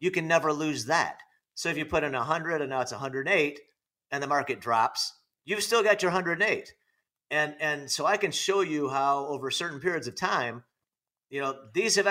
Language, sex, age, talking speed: English, male, 40-59, 205 wpm